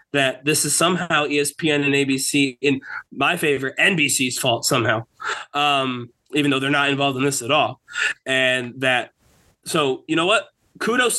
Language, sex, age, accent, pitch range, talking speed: English, male, 20-39, American, 130-150 Hz, 160 wpm